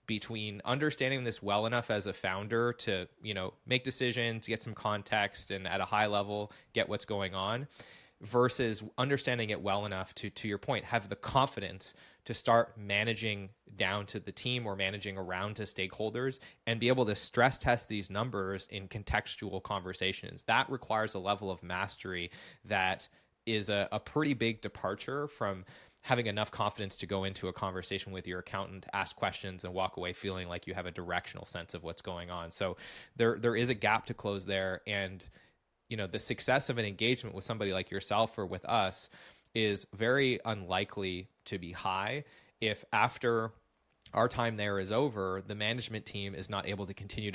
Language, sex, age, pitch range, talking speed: English, male, 20-39, 95-115 Hz, 185 wpm